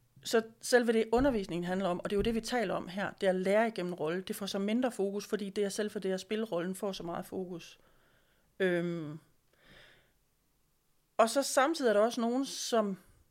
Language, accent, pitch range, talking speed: Danish, native, 185-225 Hz, 210 wpm